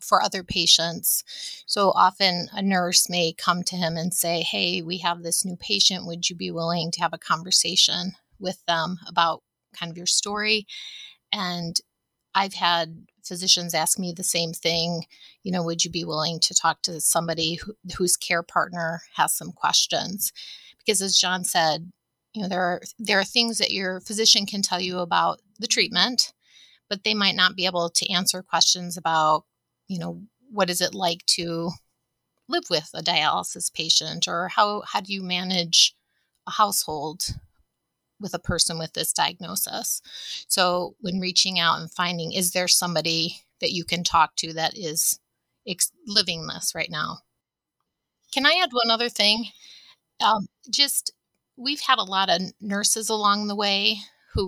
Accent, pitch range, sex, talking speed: American, 170-200 Hz, female, 170 wpm